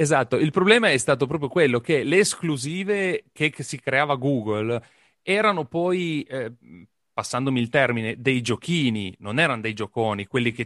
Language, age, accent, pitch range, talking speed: Italian, 30-49, native, 115-155 Hz, 160 wpm